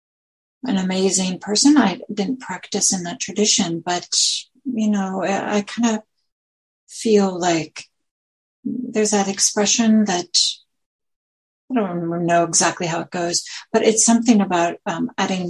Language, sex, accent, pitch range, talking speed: English, female, American, 175-220 Hz, 135 wpm